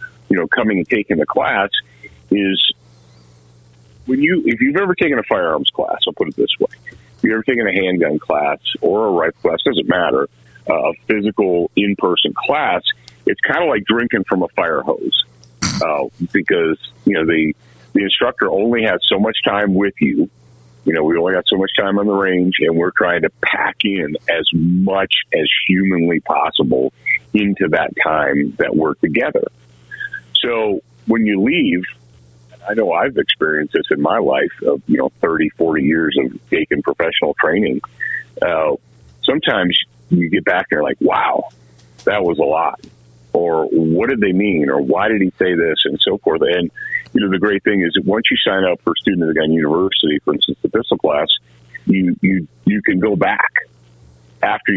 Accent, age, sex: American, 50-69, male